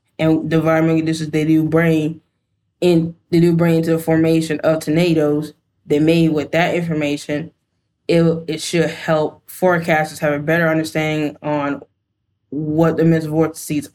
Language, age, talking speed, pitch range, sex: English, 10-29, 145 wpm, 155-170 Hz, female